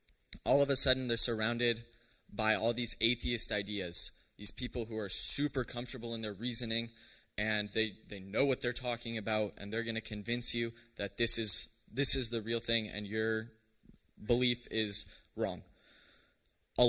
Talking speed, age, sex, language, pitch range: 170 wpm, 20-39, male, English, 105-125 Hz